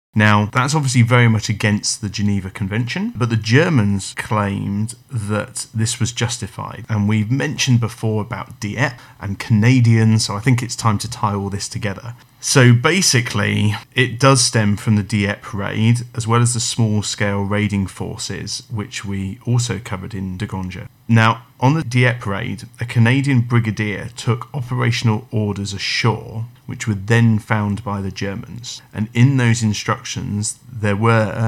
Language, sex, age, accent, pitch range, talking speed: English, male, 40-59, British, 105-120 Hz, 160 wpm